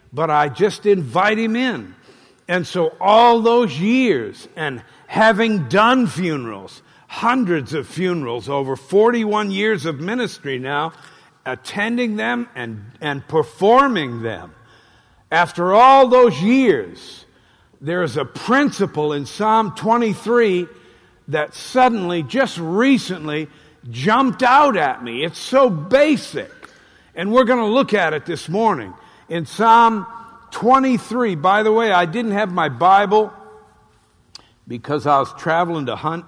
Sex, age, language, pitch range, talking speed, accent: male, 50-69, English, 125-210 Hz, 130 wpm, American